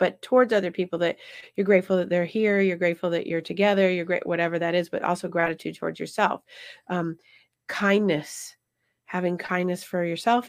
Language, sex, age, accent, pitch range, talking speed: English, female, 30-49, American, 170-210 Hz, 175 wpm